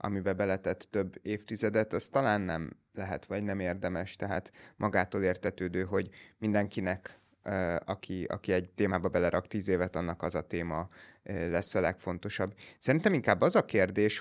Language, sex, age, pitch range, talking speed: Hungarian, male, 30-49, 95-110 Hz, 150 wpm